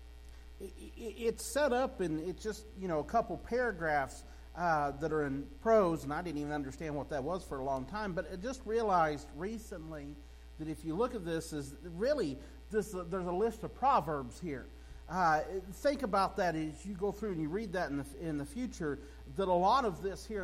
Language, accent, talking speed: English, American, 205 wpm